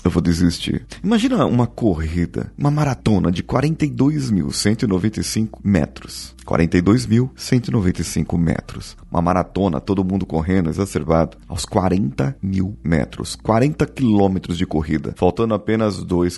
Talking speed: 105 wpm